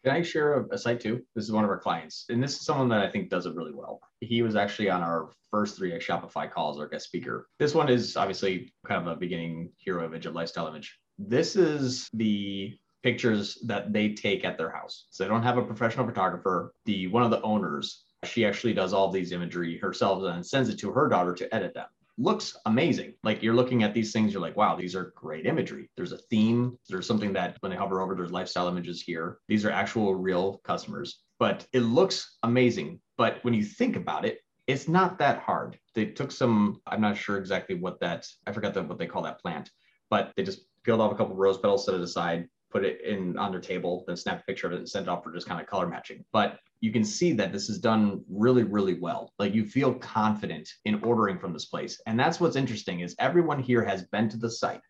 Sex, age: male, 30-49